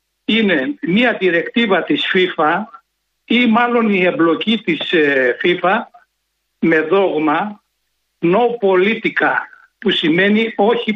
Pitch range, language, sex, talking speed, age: 175-220 Hz, Greek, male, 100 wpm, 60-79